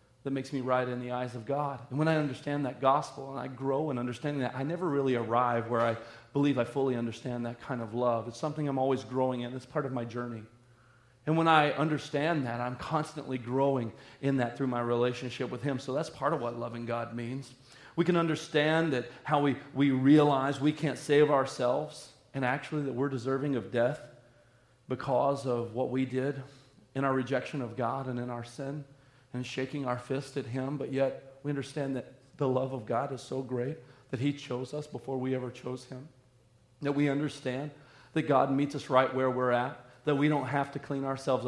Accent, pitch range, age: American, 125-140 Hz, 40-59